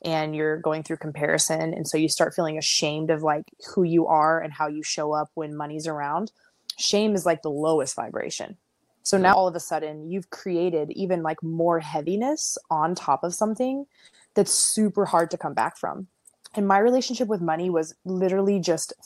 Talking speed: 190 wpm